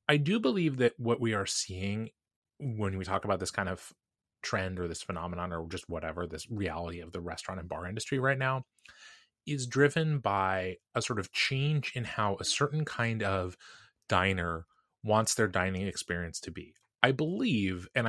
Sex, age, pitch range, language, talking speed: male, 20-39, 95-125 Hz, English, 185 wpm